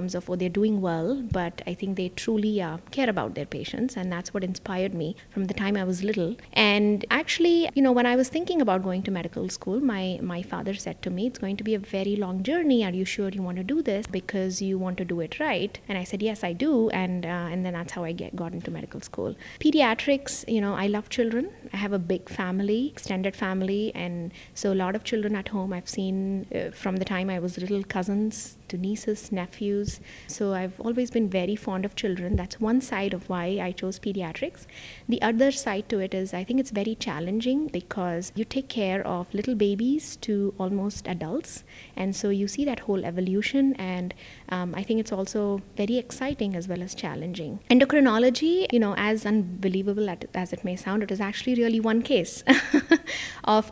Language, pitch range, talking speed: English, 185-225 Hz, 215 wpm